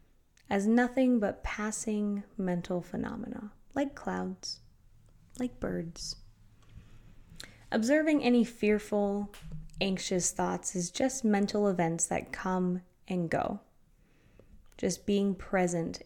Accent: American